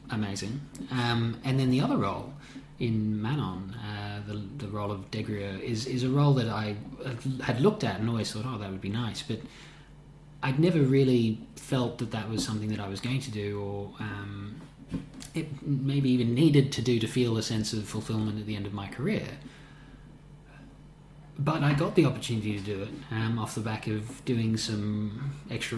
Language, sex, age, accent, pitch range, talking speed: English, male, 20-39, Australian, 105-135 Hz, 195 wpm